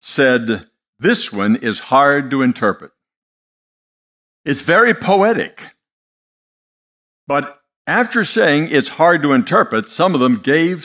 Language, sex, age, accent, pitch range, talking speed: English, male, 60-79, American, 125-205 Hz, 115 wpm